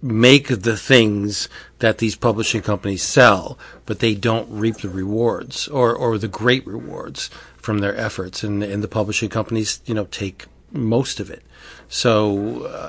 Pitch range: 105-130 Hz